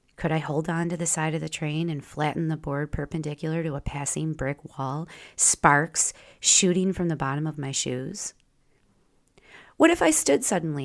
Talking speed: 185 wpm